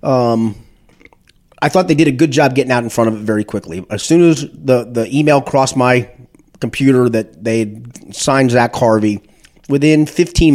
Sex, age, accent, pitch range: male, 30-49, American, 110-130 Hz